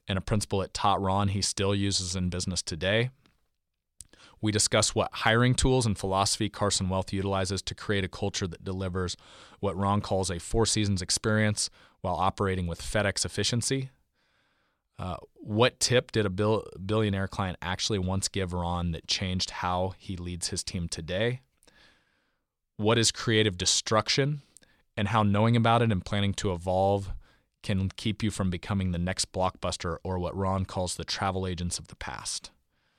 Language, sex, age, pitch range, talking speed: English, male, 30-49, 95-105 Hz, 160 wpm